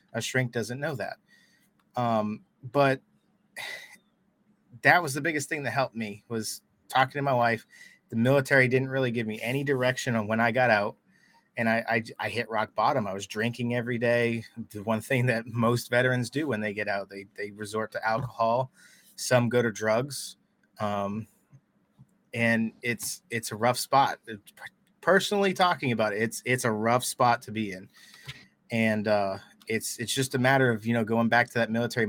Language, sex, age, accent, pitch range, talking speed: English, male, 30-49, American, 110-130 Hz, 185 wpm